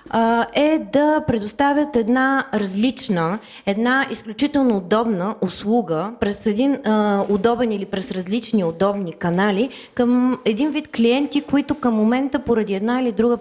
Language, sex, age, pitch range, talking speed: Bulgarian, female, 30-49, 215-265 Hz, 125 wpm